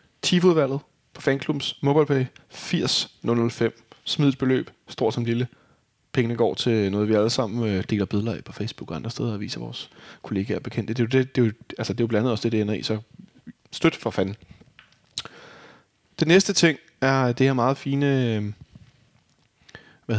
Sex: male